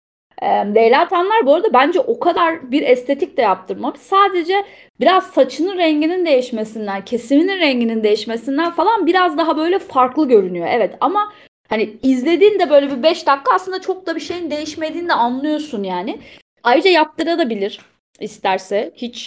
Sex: female